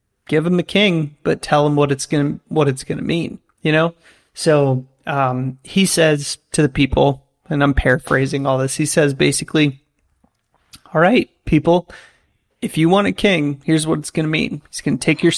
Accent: American